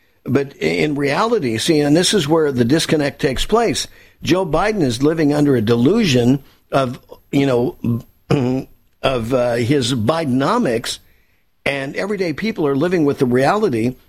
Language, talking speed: English, 145 wpm